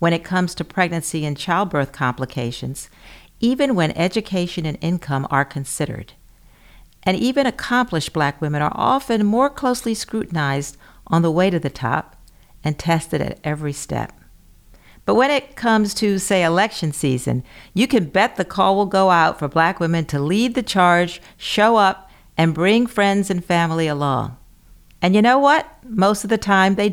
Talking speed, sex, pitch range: 170 wpm, female, 155-210 Hz